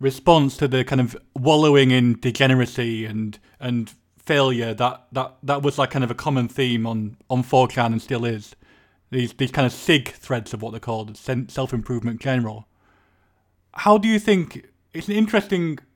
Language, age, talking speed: English, 20-39, 175 wpm